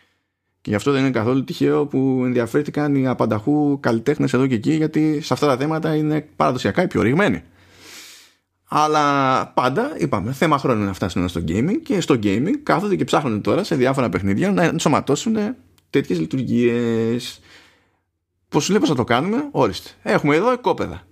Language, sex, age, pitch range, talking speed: Greek, male, 20-39, 100-165 Hz, 170 wpm